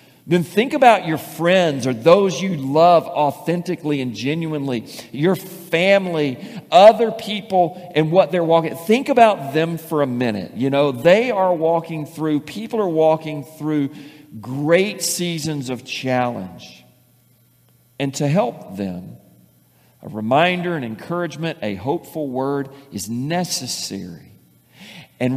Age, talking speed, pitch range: 50-69, 130 wpm, 125-175 Hz